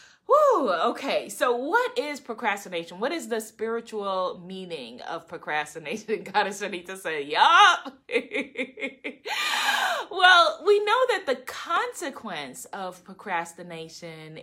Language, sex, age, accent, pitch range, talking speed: English, female, 20-39, American, 200-295 Hz, 100 wpm